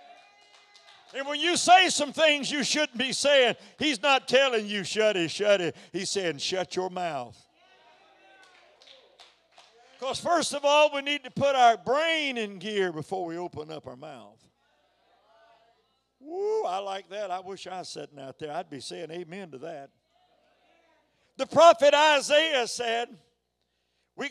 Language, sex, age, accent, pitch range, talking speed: English, male, 60-79, American, 225-320 Hz, 155 wpm